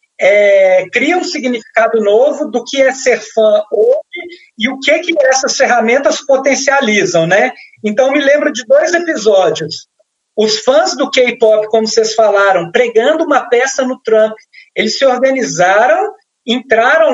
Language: Portuguese